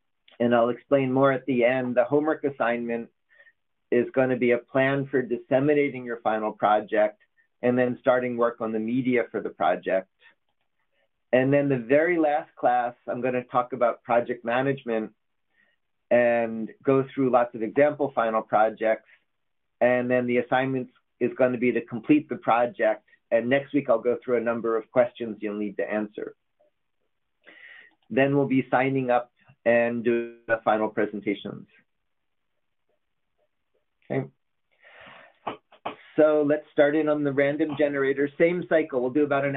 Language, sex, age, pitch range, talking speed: English, male, 40-59, 115-140 Hz, 155 wpm